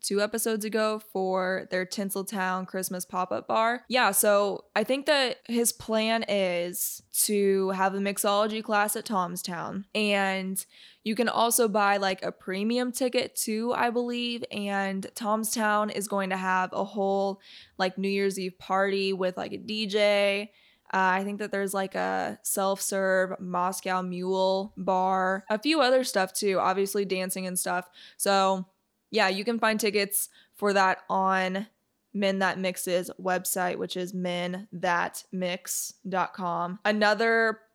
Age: 10-29